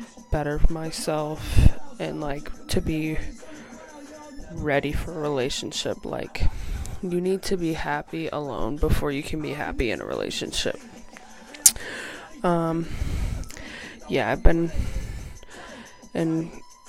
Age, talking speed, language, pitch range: 20-39, 110 wpm, English, 145-190 Hz